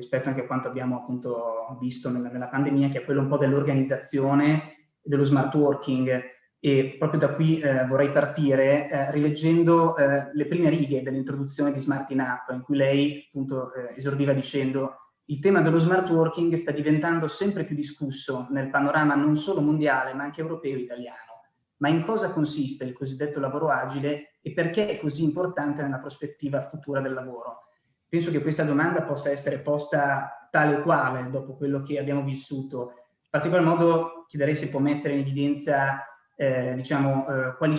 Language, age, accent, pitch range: Italian, 20-39, native, 135-150 Hz